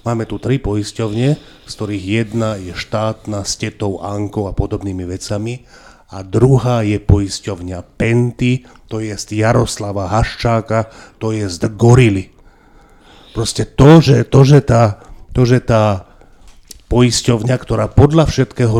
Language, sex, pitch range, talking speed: Slovak, male, 100-120 Hz, 120 wpm